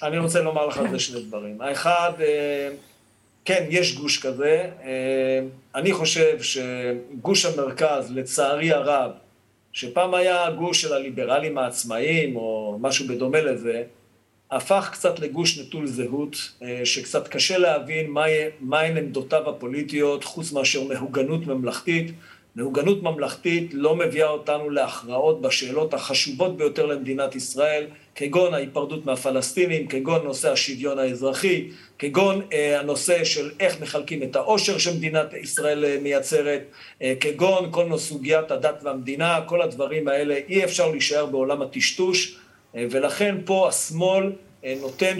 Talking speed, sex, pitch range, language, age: 125 wpm, male, 135-175 Hz, Hebrew, 50-69